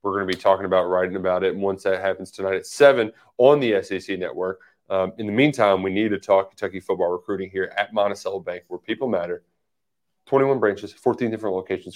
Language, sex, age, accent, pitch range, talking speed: English, male, 20-39, American, 100-155 Hz, 215 wpm